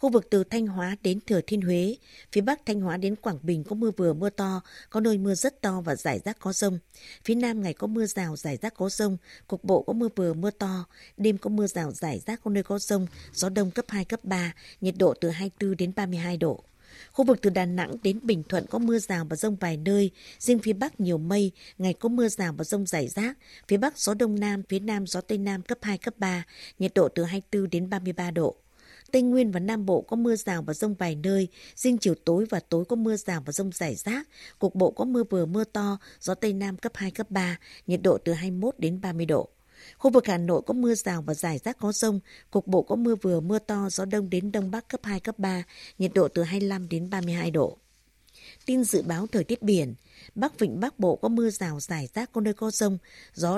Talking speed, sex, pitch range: 245 wpm, female, 180-220 Hz